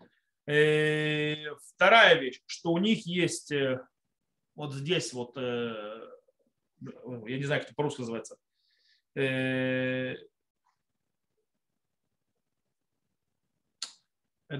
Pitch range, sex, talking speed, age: 140-210 Hz, male, 70 wpm, 30-49